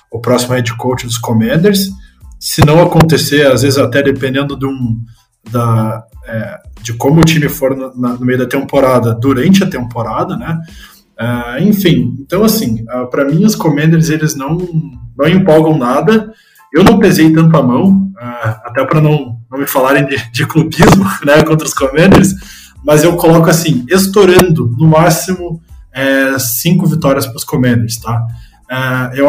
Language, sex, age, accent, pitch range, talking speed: Portuguese, male, 20-39, Brazilian, 125-165 Hz, 165 wpm